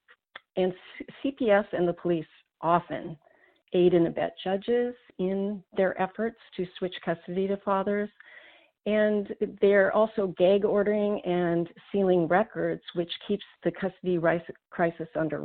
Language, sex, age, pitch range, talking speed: English, female, 40-59, 165-195 Hz, 125 wpm